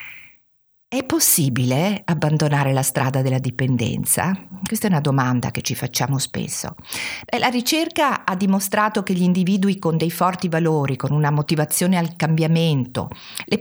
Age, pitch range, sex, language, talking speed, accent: 50-69, 145-210 Hz, female, Italian, 140 wpm, native